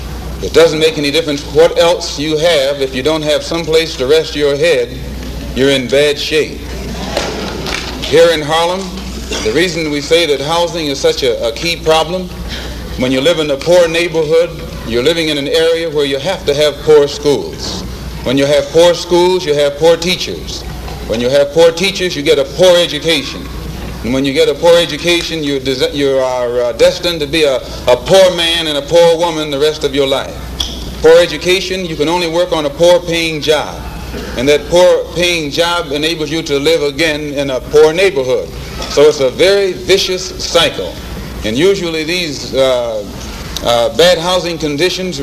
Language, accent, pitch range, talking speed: English, American, 145-175 Hz, 185 wpm